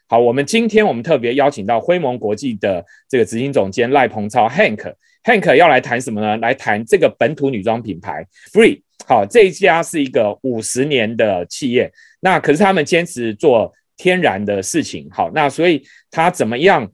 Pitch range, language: 125-195 Hz, Chinese